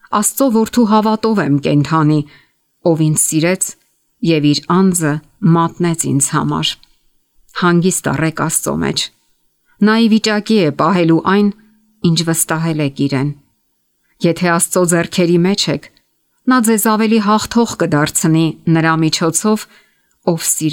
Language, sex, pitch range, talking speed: English, female, 155-195 Hz, 95 wpm